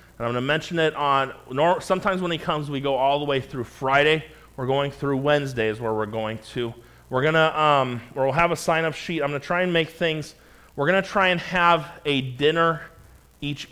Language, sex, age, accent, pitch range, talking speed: English, male, 30-49, American, 130-155 Hz, 230 wpm